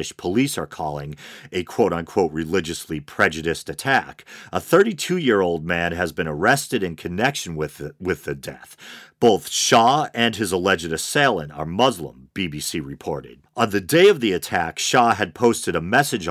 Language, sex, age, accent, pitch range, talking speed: English, male, 40-59, American, 80-115 Hz, 150 wpm